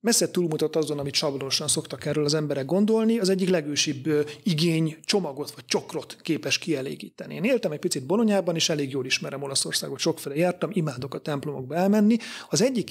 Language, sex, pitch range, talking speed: Hungarian, male, 150-190 Hz, 170 wpm